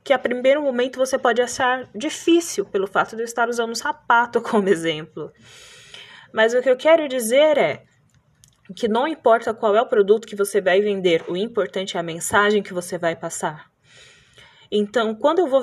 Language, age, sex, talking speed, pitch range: Portuguese, 20-39, female, 190 wpm, 190-235 Hz